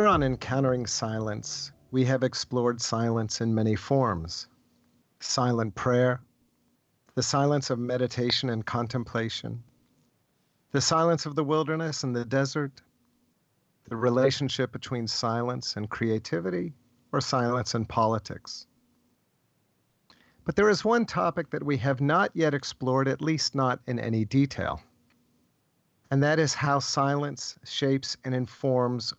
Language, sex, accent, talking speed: English, male, American, 125 wpm